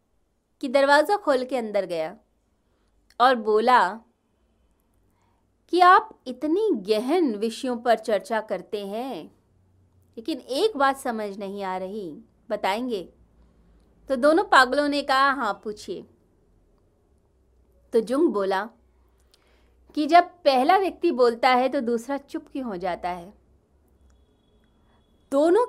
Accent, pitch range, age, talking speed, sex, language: native, 210-295 Hz, 30-49, 115 wpm, female, Hindi